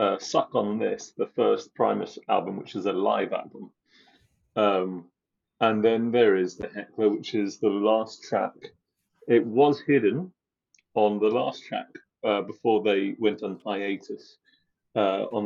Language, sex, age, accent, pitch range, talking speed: English, male, 40-59, British, 105-155 Hz, 155 wpm